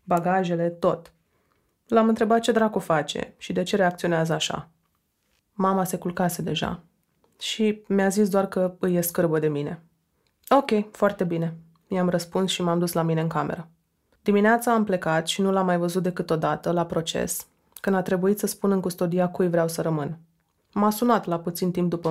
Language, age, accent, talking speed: Romanian, 20-39, native, 180 wpm